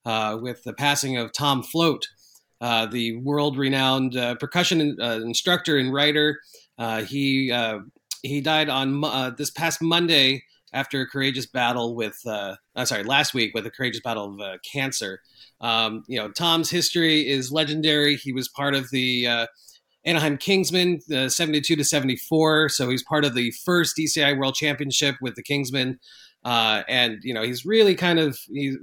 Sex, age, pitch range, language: male, 30-49, 120-150 Hz, English